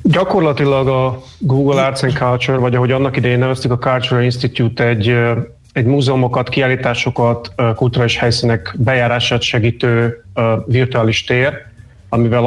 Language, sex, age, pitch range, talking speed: Hungarian, male, 30-49, 115-130 Hz, 120 wpm